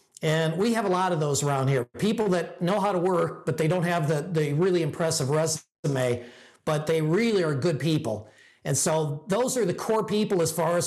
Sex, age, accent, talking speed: male, 50-69, American, 220 wpm